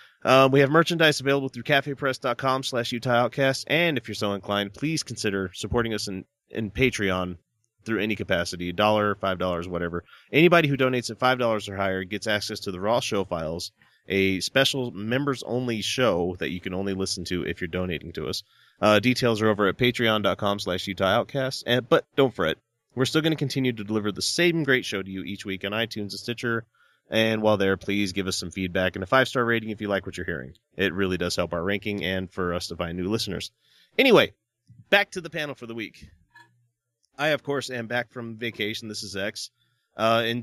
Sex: male